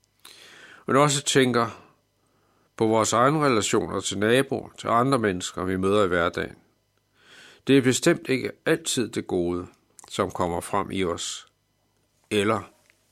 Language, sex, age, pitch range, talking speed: Danish, male, 60-79, 100-130 Hz, 135 wpm